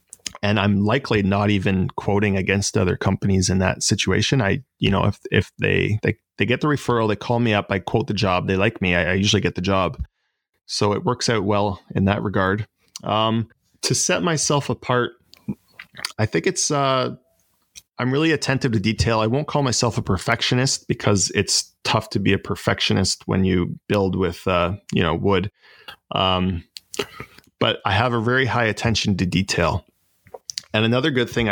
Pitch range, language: 95-120 Hz, English